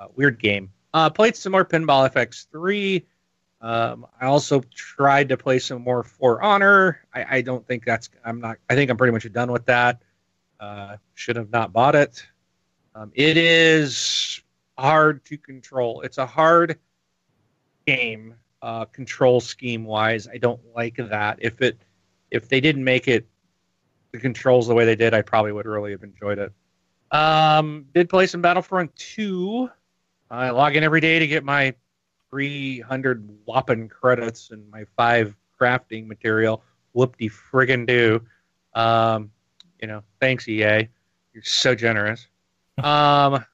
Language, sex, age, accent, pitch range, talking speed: English, male, 40-59, American, 110-150 Hz, 150 wpm